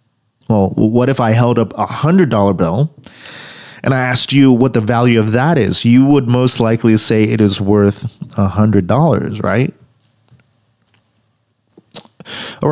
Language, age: English, 30-49